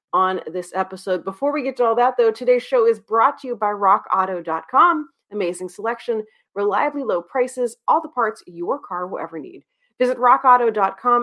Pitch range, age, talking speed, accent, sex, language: 180-265 Hz, 30-49, 175 wpm, American, female, English